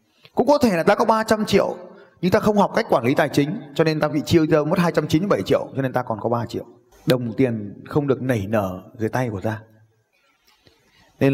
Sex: male